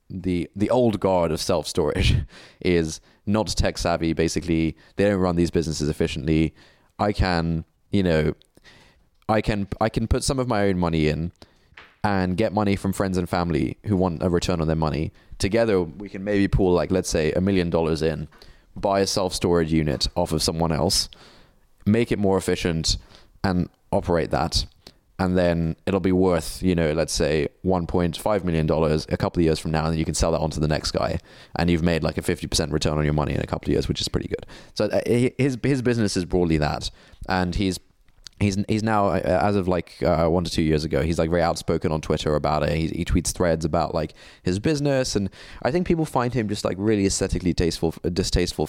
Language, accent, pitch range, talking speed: English, British, 80-100 Hz, 210 wpm